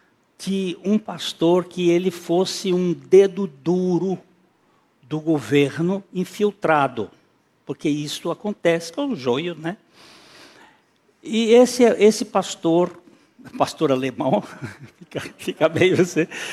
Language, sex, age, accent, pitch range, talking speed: Portuguese, male, 60-79, Brazilian, 145-195 Hz, 110 wpm